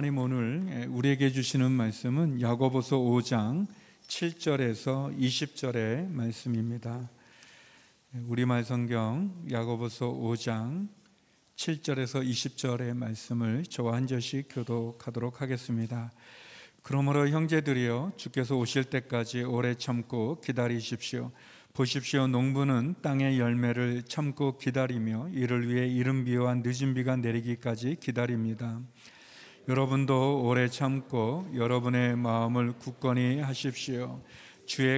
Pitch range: 120-135 Hz